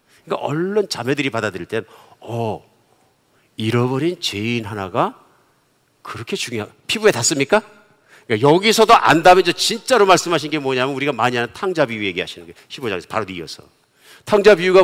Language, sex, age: Korean, male, 50-69